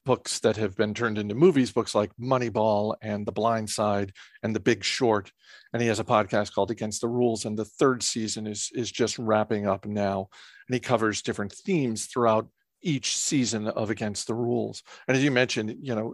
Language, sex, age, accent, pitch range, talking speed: English, male, 50-69, American, 110-145 Hz, 205 wpm